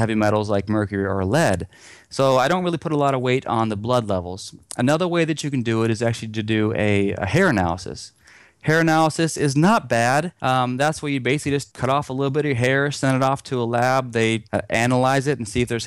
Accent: American